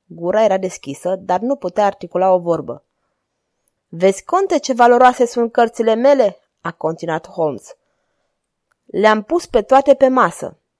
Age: 20-39